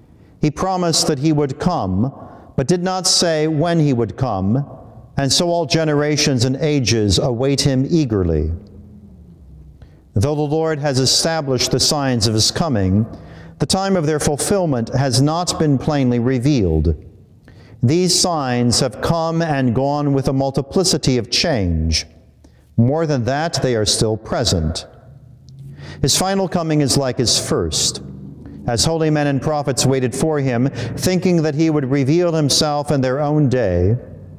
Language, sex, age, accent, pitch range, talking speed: English, male, 50-69, American, 110-155 Hz, 150 wpm